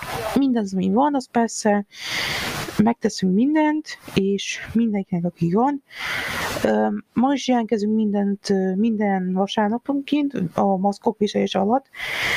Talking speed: 100 wpm